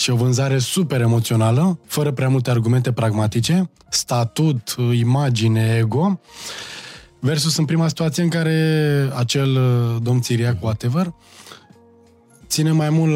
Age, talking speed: 20-39, 120 wpm